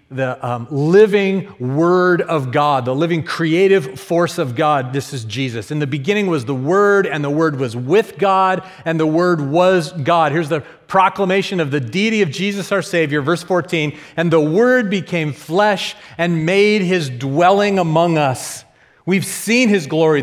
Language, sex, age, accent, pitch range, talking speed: English, male, 40-59, American, 135-185 Hz, 175 wpm